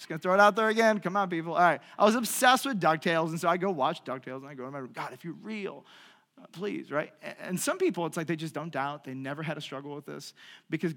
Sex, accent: male, American